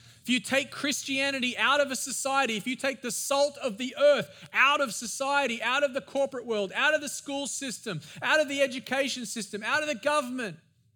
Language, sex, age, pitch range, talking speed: English, male, 20-39, 175-265 Hz, 210 wpm